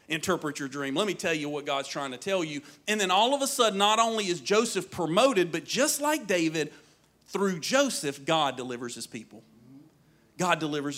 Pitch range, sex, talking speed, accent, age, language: 155-230 Hz, male, 195 wpm, American, 40-59, English